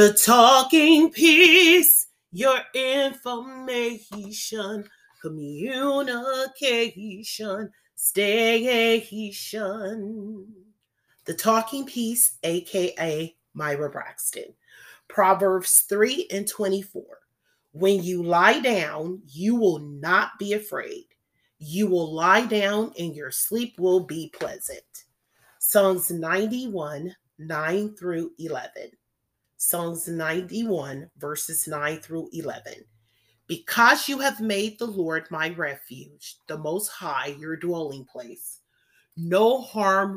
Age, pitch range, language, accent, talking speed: 30-49, 165-235 Hz, English, American, 95 wpm